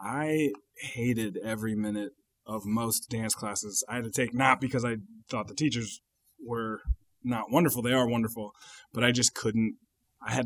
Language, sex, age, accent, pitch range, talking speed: English, male, 20-39, American, 105-120 Hz, 170 wpm